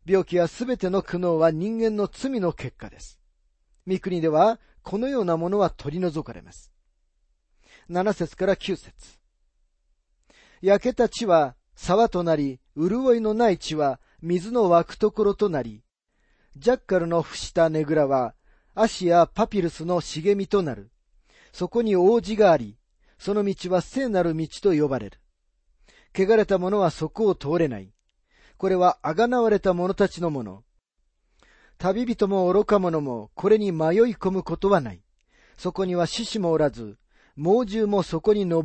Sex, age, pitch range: male, 40-59, 145-205 Hz